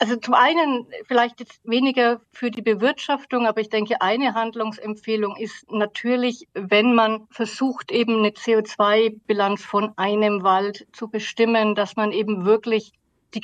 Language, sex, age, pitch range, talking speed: German, female, 50-69, 190-225 Hz, 145 wpm